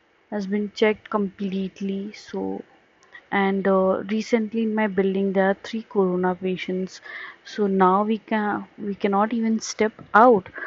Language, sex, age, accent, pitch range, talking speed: Hindi, female, 30-49, native, 190-225 Hz, 140 wpm